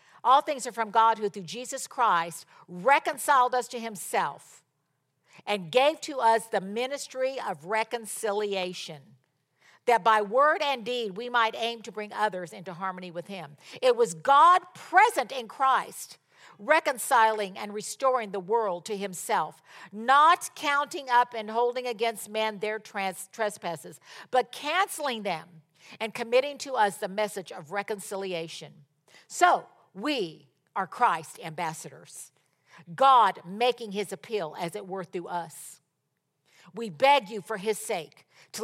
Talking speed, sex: 140 wpm, female